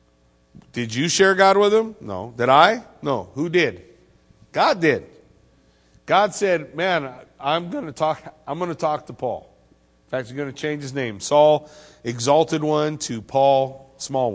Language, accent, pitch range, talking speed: English, American, 115-175 Hz, 170 wpm